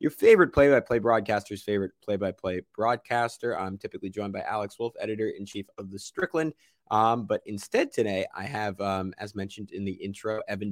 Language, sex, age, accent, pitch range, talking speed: English, male, 30-49, American, 100-125 Hz, 170 wpm